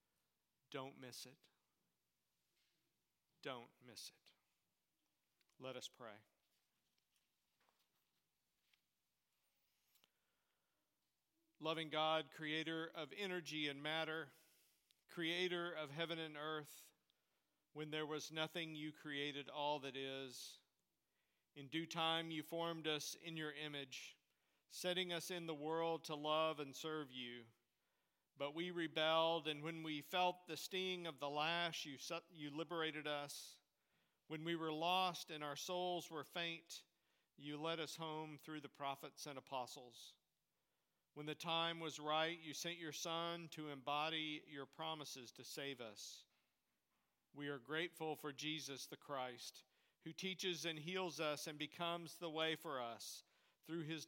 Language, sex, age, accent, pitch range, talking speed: English, male, 50-69, American, 145-165 Hz, 135 wpm